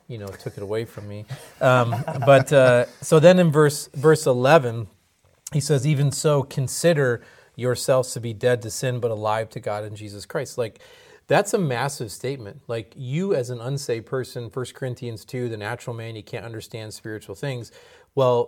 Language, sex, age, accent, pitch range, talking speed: English, male, 30-49, American, 115-145 Hz, 185 wpm